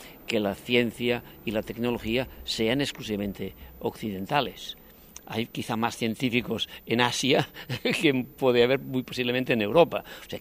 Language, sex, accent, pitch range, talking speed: Portuguese, male, Spanish, 115-170 Hz, 140 wpm